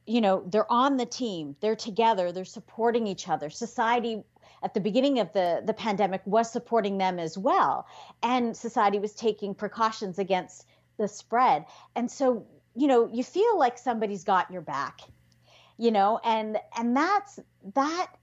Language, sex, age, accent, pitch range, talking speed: English, female, 40-59, American, 190-240 Hz, 165 wpm